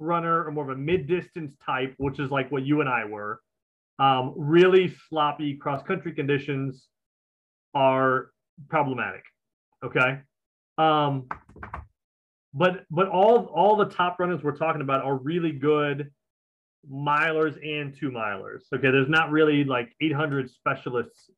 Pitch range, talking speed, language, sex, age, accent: 135-165 Hz, 135 wpm, English, male, 30-49, American